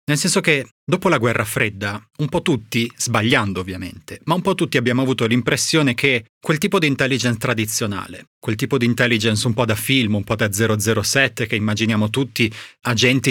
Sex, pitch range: male, 105-130 Hz